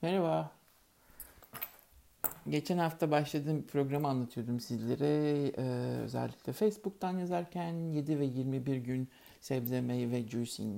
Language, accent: Turkish, native